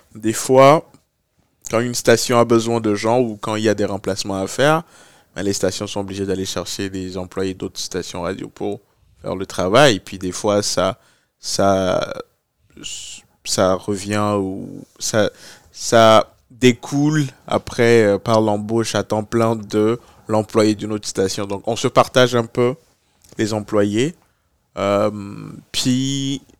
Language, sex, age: French, male, 20-39